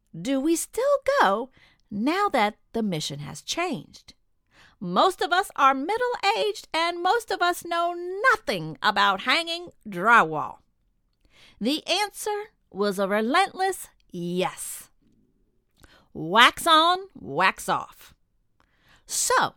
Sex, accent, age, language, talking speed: female, American, 50-69, English, 105 wpm